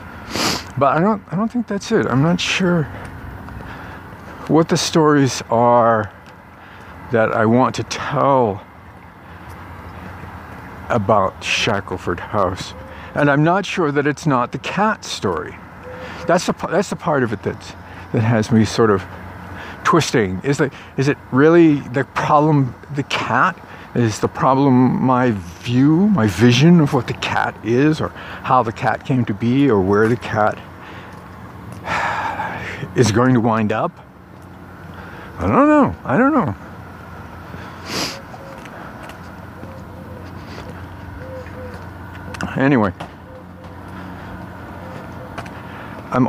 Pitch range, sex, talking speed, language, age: 95-125 Hz, male, 120 wpm, English, 50-69